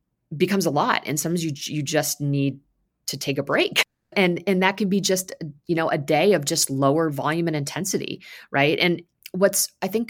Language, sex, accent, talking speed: English, female, American, 200 wpm